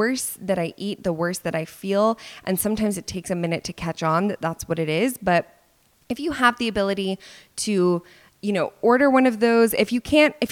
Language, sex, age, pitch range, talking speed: English, female, 20-39, 175-220 Hz, 230 wpm